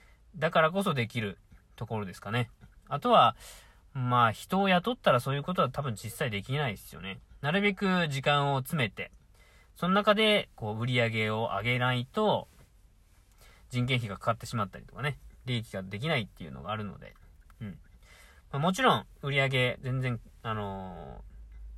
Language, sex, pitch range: Japanese, male, 100-150 Hz